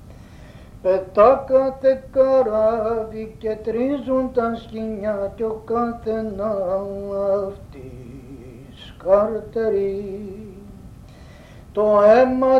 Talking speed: 60 wpm